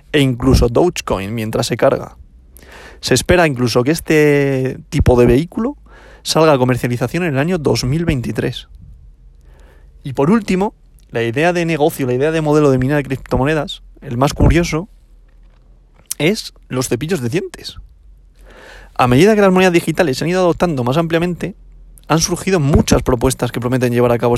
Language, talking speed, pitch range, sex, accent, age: Spanish, 160 wpm, 125-165 Hz, male, Spanish, 30-49